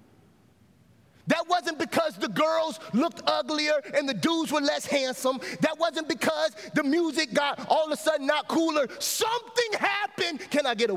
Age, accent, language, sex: 30-49, American, English, male